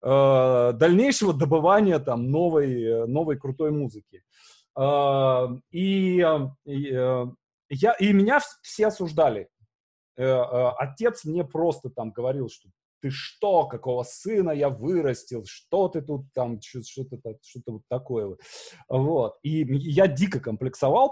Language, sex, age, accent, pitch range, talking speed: Russian, male, 30-49, native, 125-195 Hz, 115 wpm